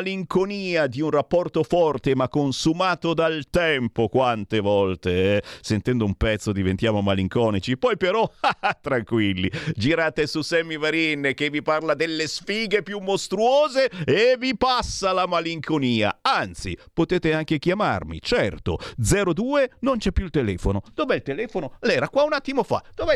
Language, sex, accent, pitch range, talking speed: Italian, male, native, 130-200 Hz, 145 wpm